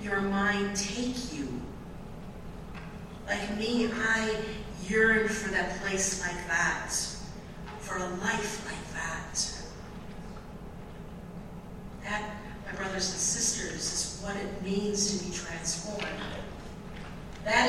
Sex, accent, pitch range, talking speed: female, American, 195-220 Hz, 105 wpm